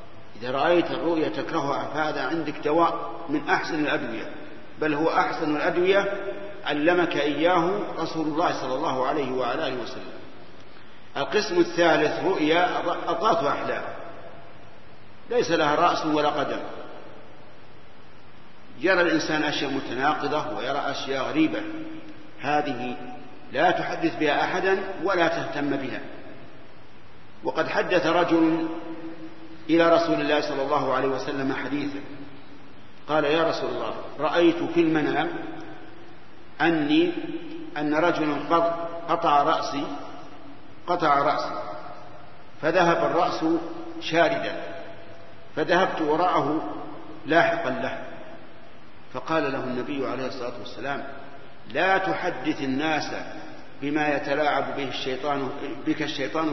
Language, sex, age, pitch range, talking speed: Arabic, male, 50-69, 145-200 Hz, 100 wpm